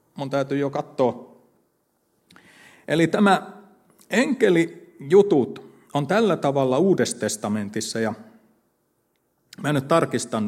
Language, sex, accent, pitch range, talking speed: Finnish, male, native, 120-160 Hz, 85 wpm